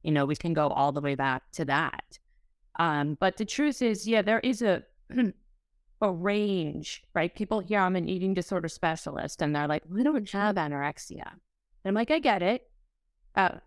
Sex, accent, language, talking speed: female, American, English, 195 wpm